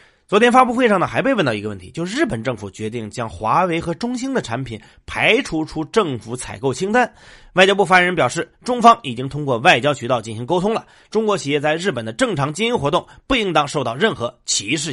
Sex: male